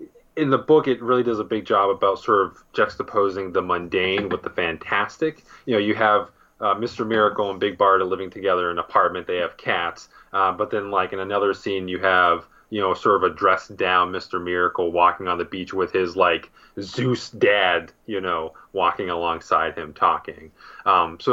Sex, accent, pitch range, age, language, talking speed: male, American, 90-125 Hz, 20-39, English, 200 wpm